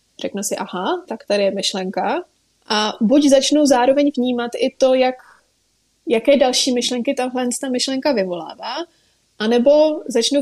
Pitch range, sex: 220-275 Hz, female